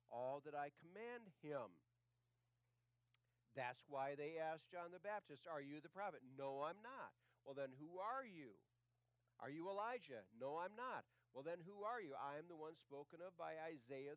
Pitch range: 120-145 Hz